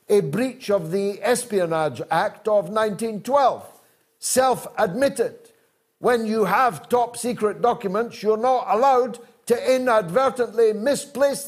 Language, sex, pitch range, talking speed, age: English, male, 200-265 Hz, 105 wpm, 60-79